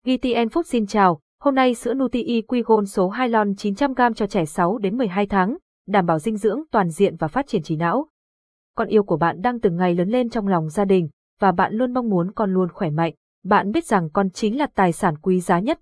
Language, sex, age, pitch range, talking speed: Vietnamese, female, 20-39, 185-230 Hz, 250 wpm